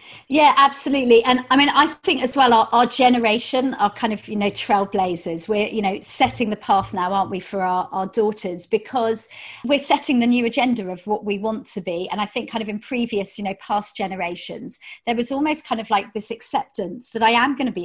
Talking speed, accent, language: 230 wpm, British, English